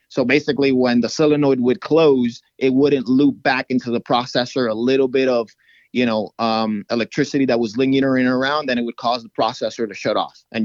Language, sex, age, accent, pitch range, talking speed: English, male, 30-49, American, 120-140 Hz, 205 wpm